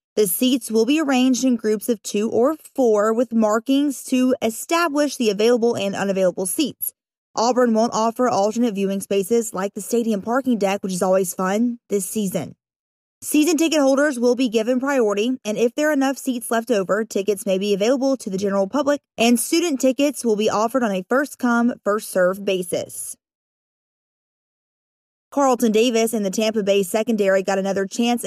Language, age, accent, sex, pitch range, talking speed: English, 20-39, American, female, 210-260 Hz, 170 wpm